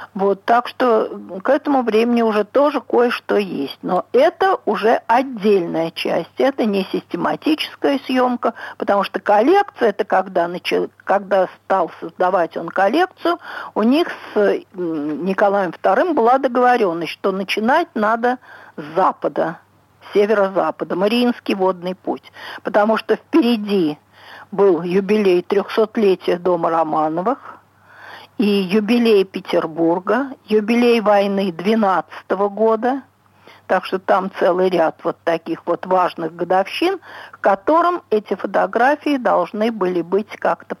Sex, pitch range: female, 185-250 Hz